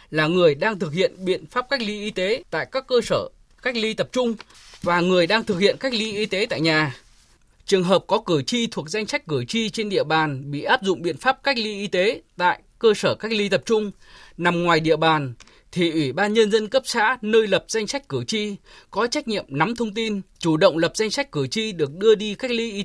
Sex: male